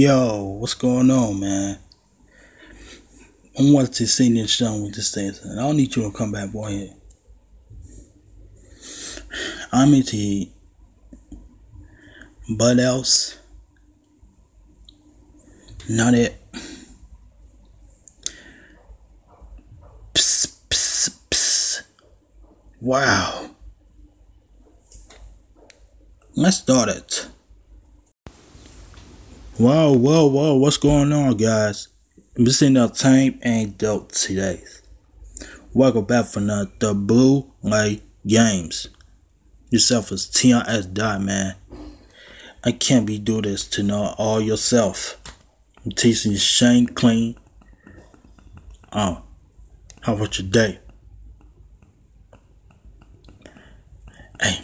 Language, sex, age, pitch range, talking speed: English, male, 20-39, 95-120 Hz, 90 wpm